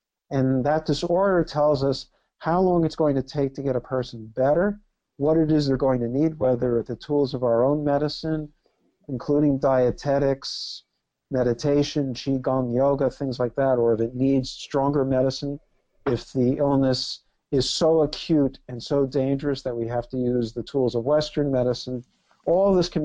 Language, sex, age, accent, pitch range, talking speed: English, male, 50-69, American, 125-155 Hz, 170 wpm